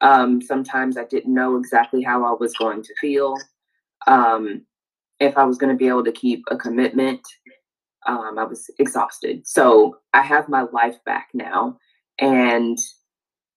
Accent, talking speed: American, 160 wpm